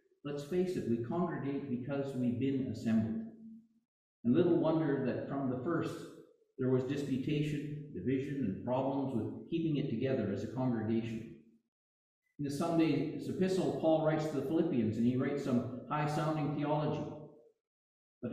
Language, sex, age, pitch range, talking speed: English, male, 50-69, 120-160 Hz, 145 wpm